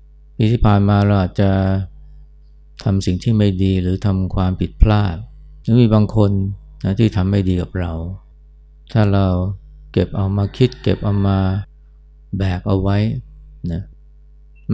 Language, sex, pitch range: Thai, male, 75-100 Hz